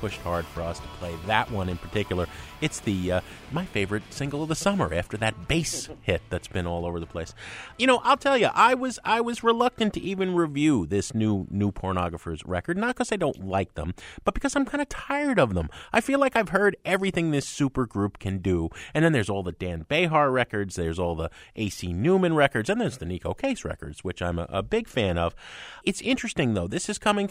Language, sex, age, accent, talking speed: English, male, 30-49, American, 230 wpm